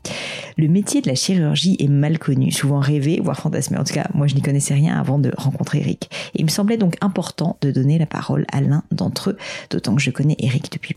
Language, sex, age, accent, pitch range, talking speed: French, female, 30-49, French, 140-175 Hz, 240 wpm